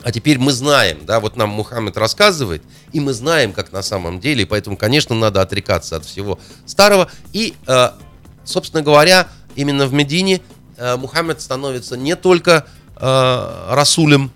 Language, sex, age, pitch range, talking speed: Russian, male, 30-49, 105-145 Hz, 145 wpm